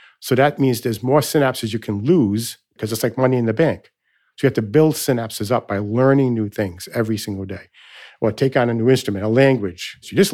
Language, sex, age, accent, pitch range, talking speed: English, male, 50-69, American, 110-135 Hz, 240 wpm